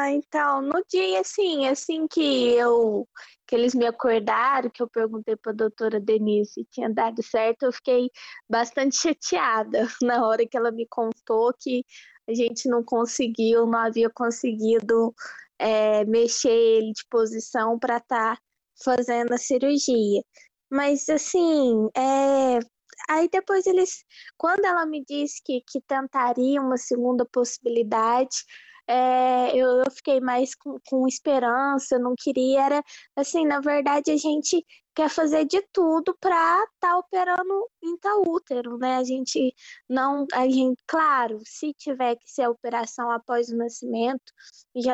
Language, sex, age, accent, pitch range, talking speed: Portuguese, female, 20-39, Brazilian, 235-290 Hz, 145 wpm